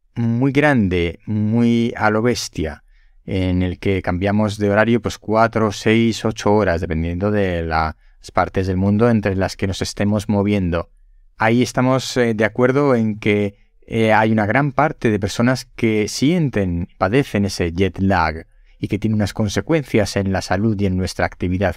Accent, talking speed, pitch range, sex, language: Spanish, 165 wpm, 95-115 Hz, male, Spanish